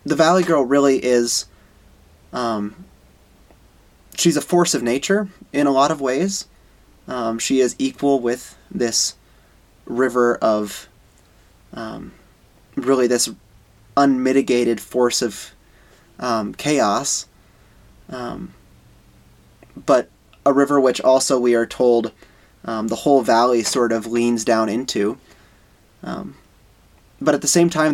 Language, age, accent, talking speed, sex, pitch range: English, 20-39, American, 120 wpm, male, 105-125 Hz